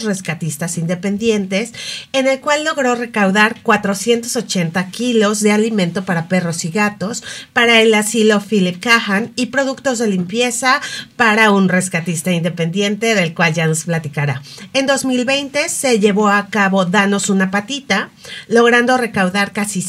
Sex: female